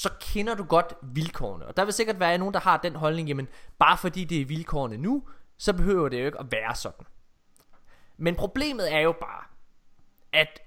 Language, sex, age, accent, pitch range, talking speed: Danish, male, 20-39, native, 125-185 Hz, 200 wpm